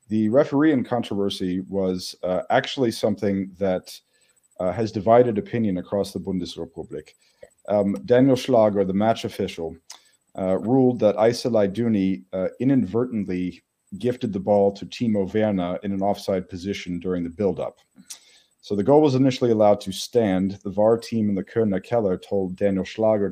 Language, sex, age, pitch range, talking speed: English, male, 40-59, 95-115 Hz, 155 wpm